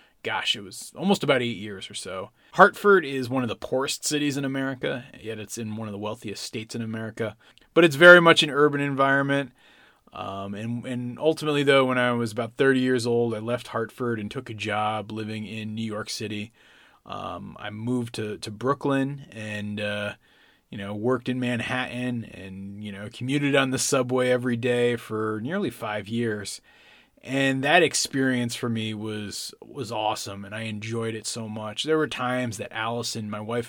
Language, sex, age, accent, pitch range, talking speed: English, male, 30-49, American, 110-130 Hz, 190 wpm